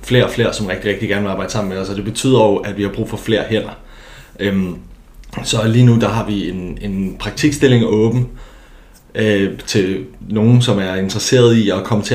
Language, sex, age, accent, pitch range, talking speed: Danish, male, 30-49, native, 100-110 Hz, 215 wpm